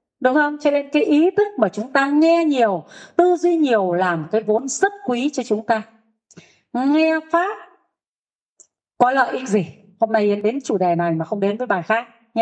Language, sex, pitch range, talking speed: Vietnamese, female, 195-280 Hz, 205 wpm